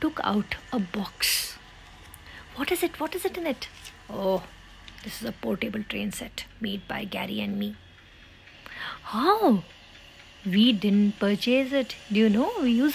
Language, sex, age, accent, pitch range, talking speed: English, female, 50-69, Indian, 180-245 Hz, 160 wpm